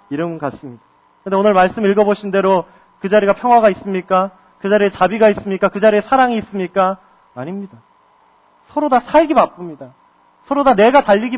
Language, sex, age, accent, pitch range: Korean, male, 30-49, native, 190-255 Hz